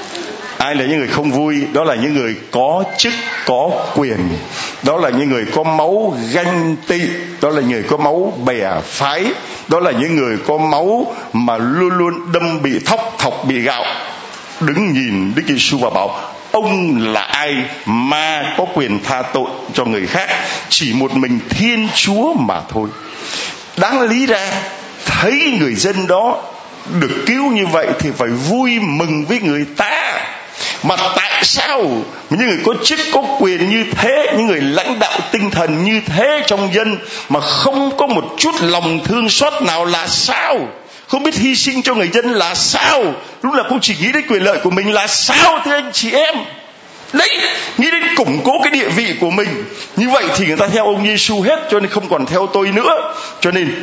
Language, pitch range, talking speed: Vietnamese, 160-235 Hz, 190 wpm